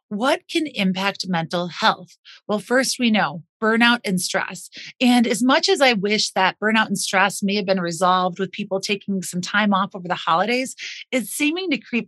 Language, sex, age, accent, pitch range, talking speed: English, female, 30-49, American, 195-265 Hz, 195 wpm